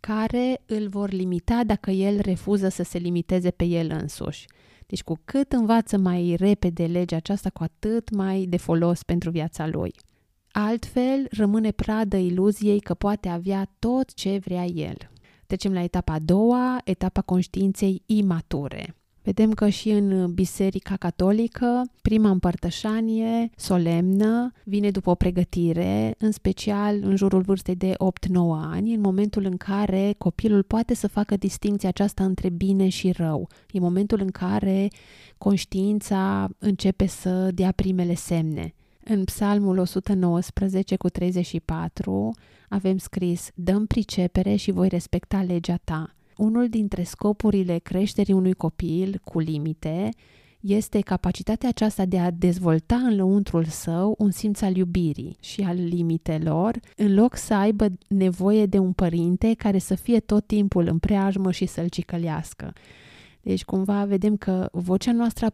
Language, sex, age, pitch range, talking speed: Romanian, female, 30-49, 175-205 Hz, 145 wpm